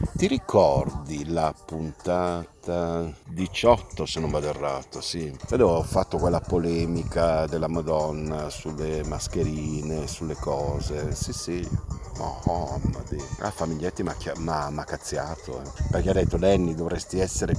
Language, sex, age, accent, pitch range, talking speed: Italian, male, 50-69, native, 80-100 Hz, 135 wpm